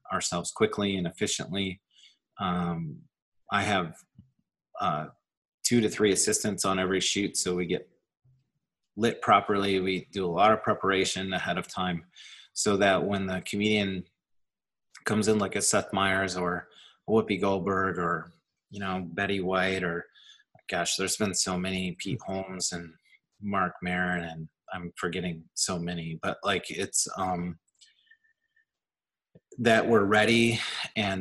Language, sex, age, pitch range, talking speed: English, male, 30-49, 90-105 Hz, 140 wpm